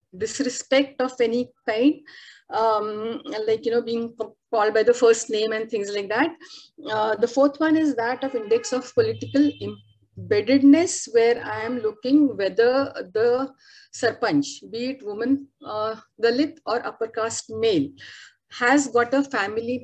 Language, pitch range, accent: English, 225-290 Hz, Indian